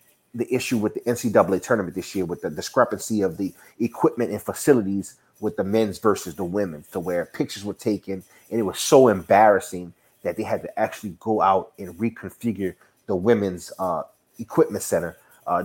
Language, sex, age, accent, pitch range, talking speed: English, male, 30-49, American, 95-115 Hz, 180 wpm